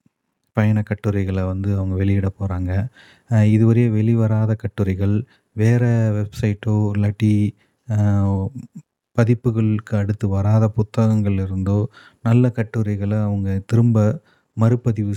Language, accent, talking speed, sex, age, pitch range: Tamil, native, 85 wpm, male, 30-49, 105-120 Hz